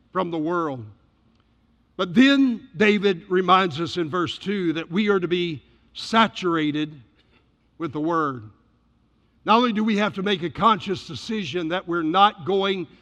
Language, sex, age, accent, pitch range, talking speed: English, male, 60-79, American, 150-200 Hz, 155 wpm